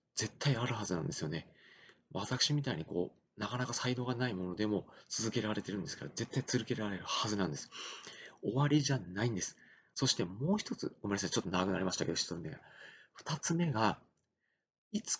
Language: Japanese